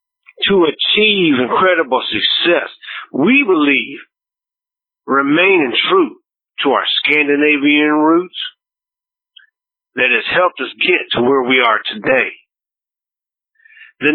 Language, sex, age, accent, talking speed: English, male, 50-69, American, 100 wpm